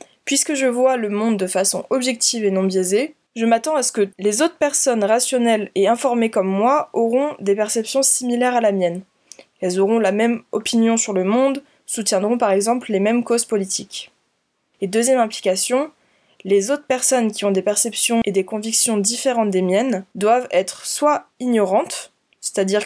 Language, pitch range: French, 200-250 Hz